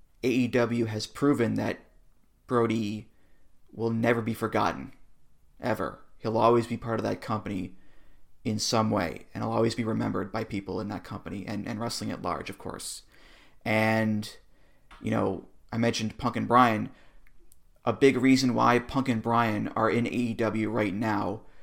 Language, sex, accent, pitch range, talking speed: English, male, American, 105-120 Hz, 160 wpm